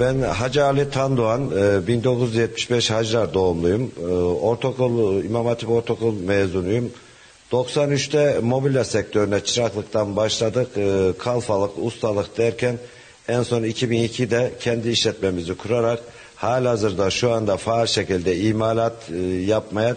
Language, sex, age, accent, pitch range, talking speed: Turkish, male, 50-69, native, 110-125 Hz, 100 wpm